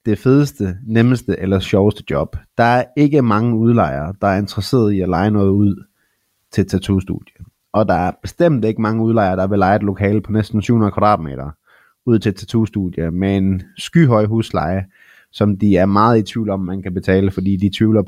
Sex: male